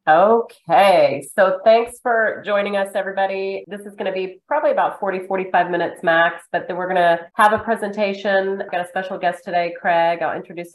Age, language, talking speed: 30-49, English, 195 wpm